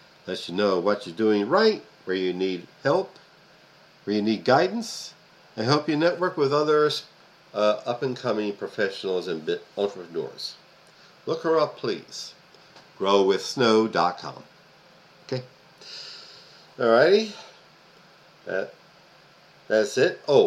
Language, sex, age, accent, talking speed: English, male, 60-79, American, 105 wpm